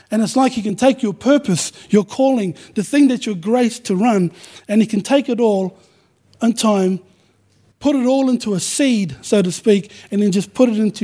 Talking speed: 215 wpm